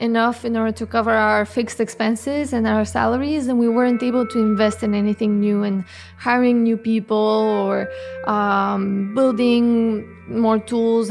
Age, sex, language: 20-39, female, English